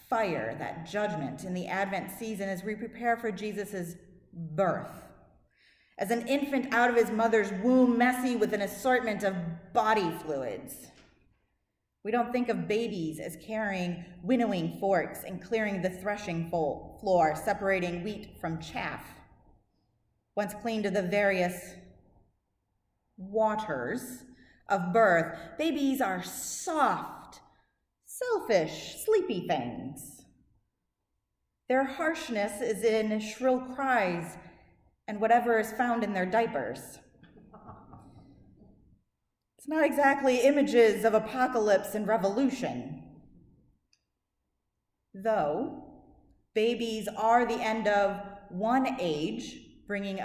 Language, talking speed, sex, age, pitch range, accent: English, 105 wpm, female, 30-49, 185-235 Hz, American